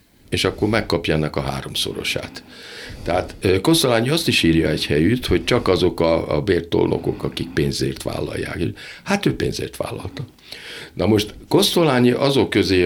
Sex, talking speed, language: male, 140 wpm, Hungarian